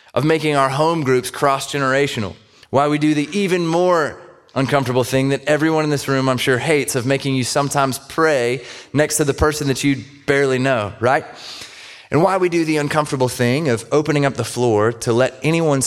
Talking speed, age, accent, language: 195 wpm, 30-49, American, English